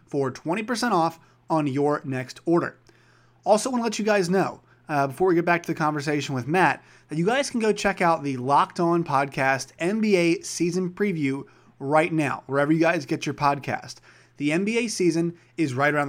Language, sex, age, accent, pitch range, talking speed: English, male, 30-49, American, 140-175 Hz, 195 wpm